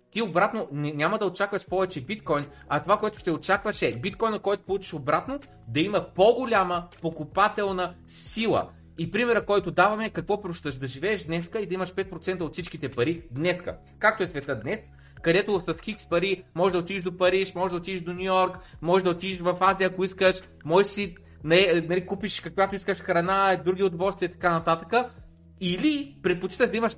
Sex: male